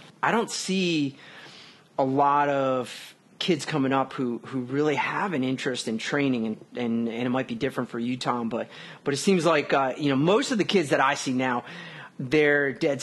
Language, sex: English, male